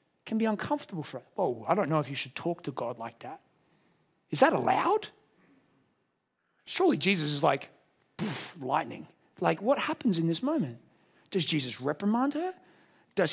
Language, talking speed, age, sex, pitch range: English, 160 wpm, 30-49, male, 175-270 Hz